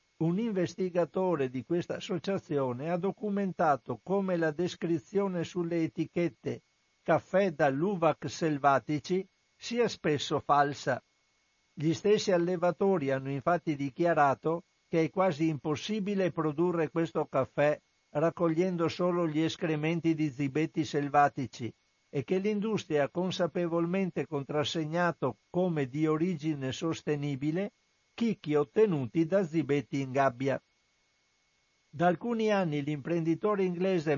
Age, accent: 60-79, native